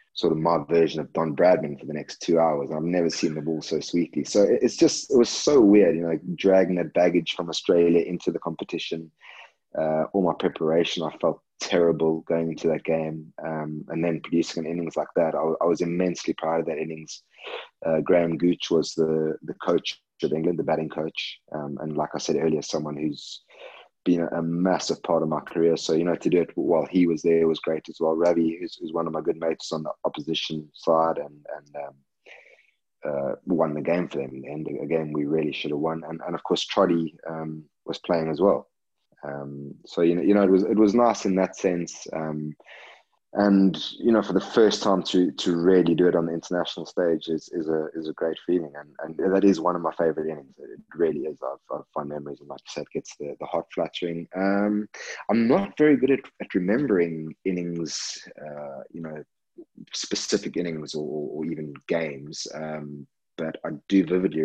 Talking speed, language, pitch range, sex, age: 215 wpm, English, 75-85 Hz, male, 20-39